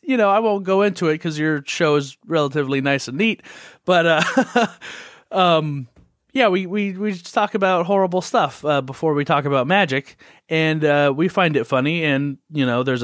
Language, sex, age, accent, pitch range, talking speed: English, male, 30-49, American, 120-150 Hz, 200 wpm